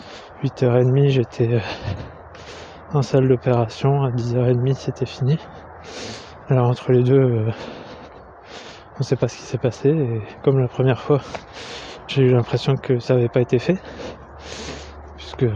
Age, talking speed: 20-39, 140 wpm